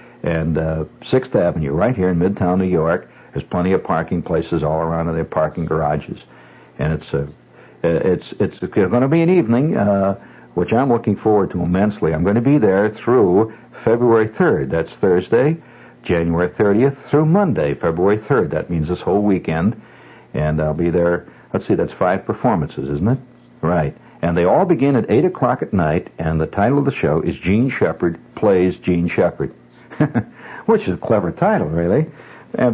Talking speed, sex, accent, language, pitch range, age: 180 wpm, male, American, English, 85-110 Hz, 60-79